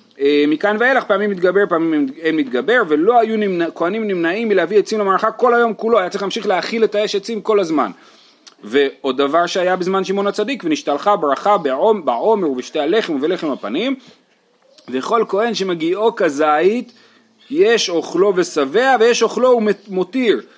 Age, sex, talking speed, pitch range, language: 30-49, male, 145 wpm, 160-230 Hz, Hebrew